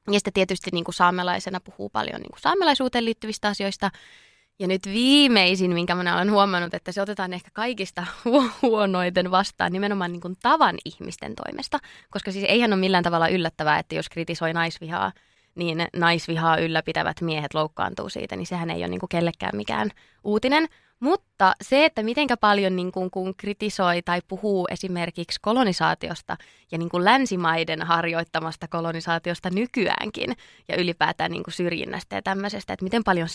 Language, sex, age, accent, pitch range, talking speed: Finnish, female, 20-39, native, 170-210 Hz, 145 wpm